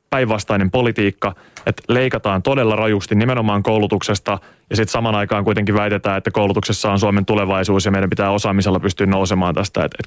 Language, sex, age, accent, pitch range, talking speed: Finnish, male, 20-39, native, 100-115 Hz, 165 wpm